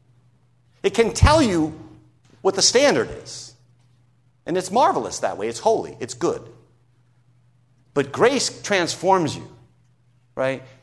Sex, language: male, English